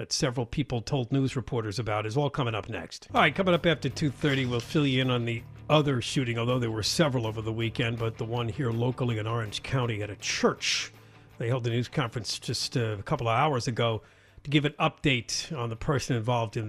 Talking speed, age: 235 wpm, 50-69